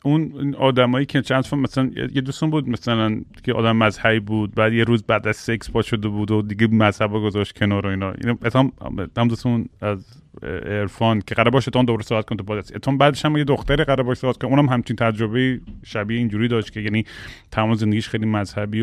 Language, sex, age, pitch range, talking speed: Persian, male, 30-49, 105-125 Hz, 195 wpm